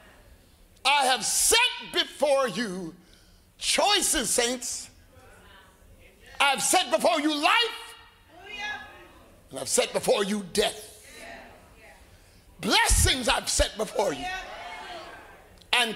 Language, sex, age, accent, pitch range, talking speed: English, male, 50-69, American, 205-320 Hz, 90 wpm